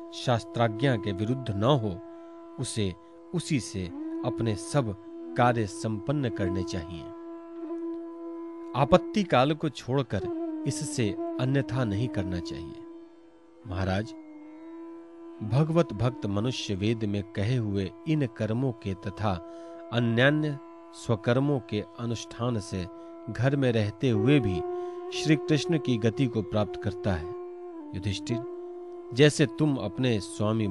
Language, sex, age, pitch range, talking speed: Hindi, male, 40-59, 110-165 Hz, 115 wpm